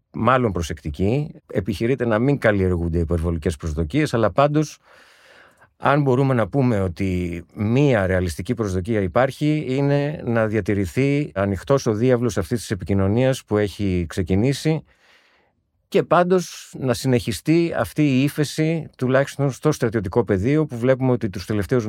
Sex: male